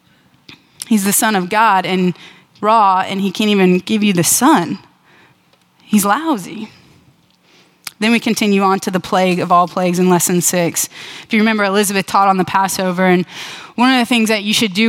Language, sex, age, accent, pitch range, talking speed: English, female, 20-39, American, 185-225 Hz, 190 wpm